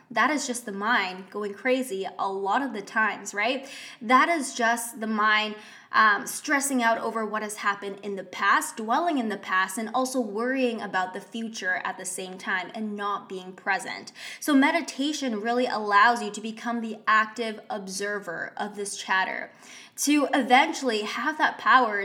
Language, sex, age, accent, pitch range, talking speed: English, female, 20-39, American, 205-270 Hz, 175 wpm